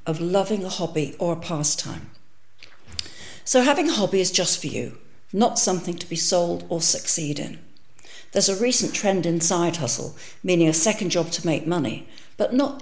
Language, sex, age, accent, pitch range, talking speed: English, female, 60-79, British, 165-215 Hz, 185 wpm